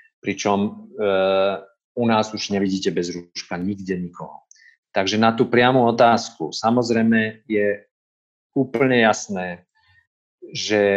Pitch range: 100-115 Hz